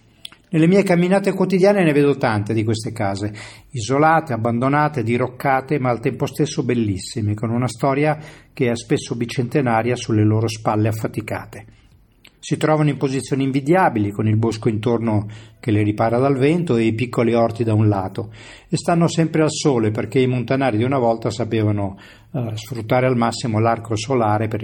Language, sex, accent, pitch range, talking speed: Italian, male, native, 105-130 Hz, 170 wpm